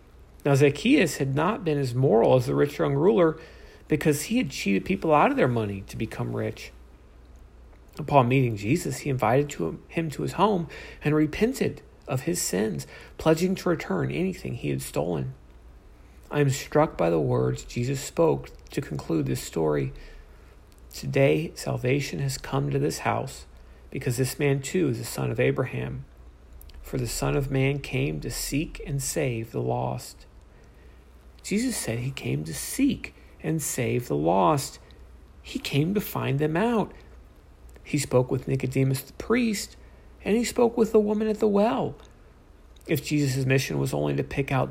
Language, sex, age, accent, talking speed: English, male, 40-59, American, 170 wpm